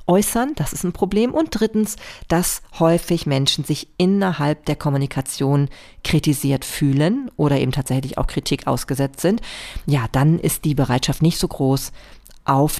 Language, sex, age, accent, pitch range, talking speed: German, female, 40-59, German, 140-180 Hz, 150 wpm